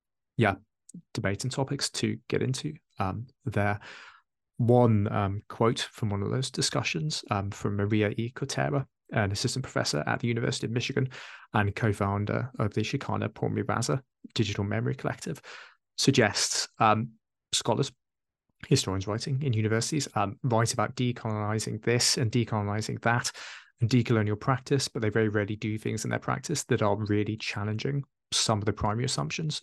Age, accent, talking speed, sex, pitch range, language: 20-39, British, 150 wpm, male, 105-130 Hz, English